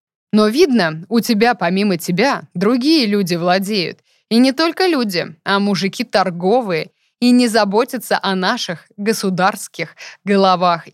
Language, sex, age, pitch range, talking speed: Russian, female, 20-39, 180-240 Hz, 125 wpm